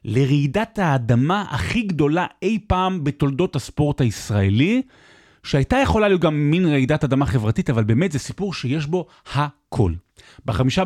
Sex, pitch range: male, 110-150 Hz